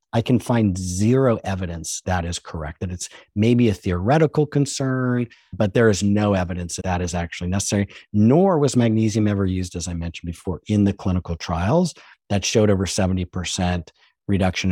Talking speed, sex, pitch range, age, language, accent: 170 wpm, male, 90-115 Hz, 50-69, English, American